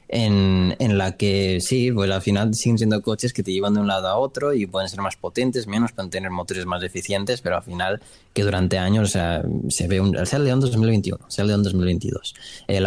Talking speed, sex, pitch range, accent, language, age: 230 wpm, male, 90-105 Hz, Spanish, Spanish, 20-39